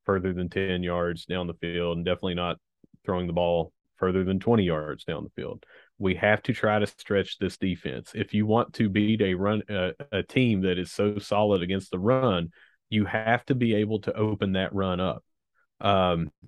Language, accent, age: English, American, 30-49